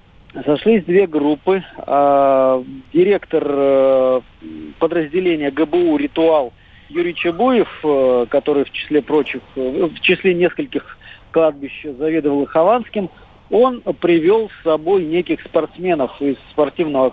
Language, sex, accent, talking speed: Russian, male, native, 95 wpm